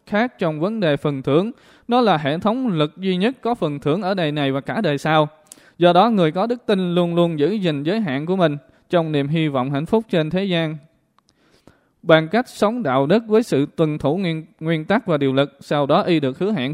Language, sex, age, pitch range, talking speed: Vietnamese, male, 20-39, 145-190 Hz, 240 wpm